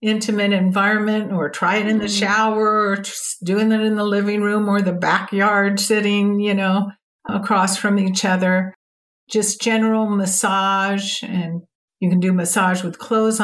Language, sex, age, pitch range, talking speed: English, female, 60-79, 190-225 Hz, 160 wpm